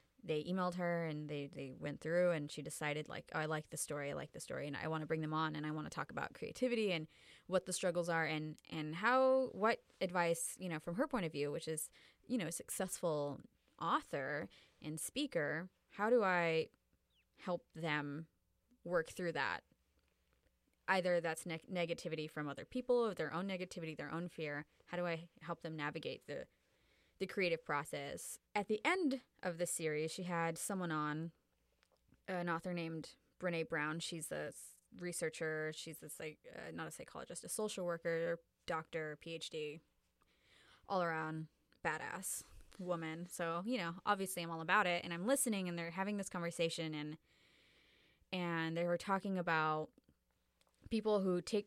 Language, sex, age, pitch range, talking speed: English, female, 20-39, 155-185 Hz, 175 wpm